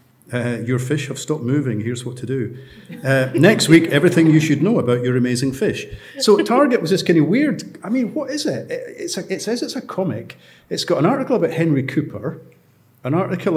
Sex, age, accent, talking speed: male, 50-69, British, 210 wpm